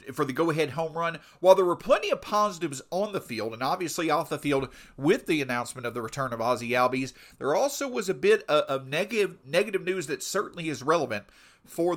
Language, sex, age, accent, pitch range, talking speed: English, male, 40-59, American, 140-195 Hz, 210 wpm